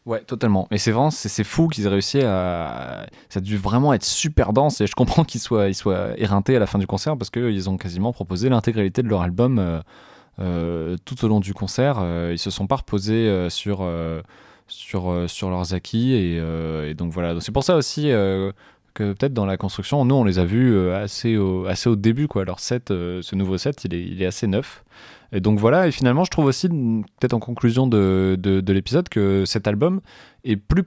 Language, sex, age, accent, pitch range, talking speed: French, male, 20-39, French, 95-125 Hz, 205 wpm